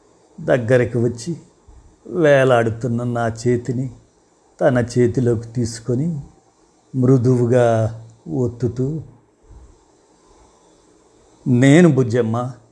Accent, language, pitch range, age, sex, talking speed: native, Telugu, 115-140 Hz, 50-69, male, 55 wpm